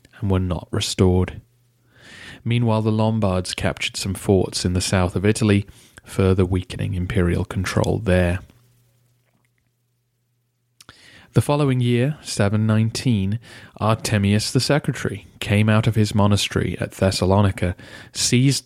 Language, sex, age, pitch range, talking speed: English, male, 30-49, 95-120 Hz, 115 wpm